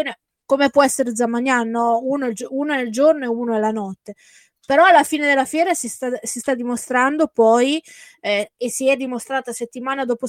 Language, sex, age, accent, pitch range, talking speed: Italian, female, 20-39, native, 230-280 Hz, 175 wpm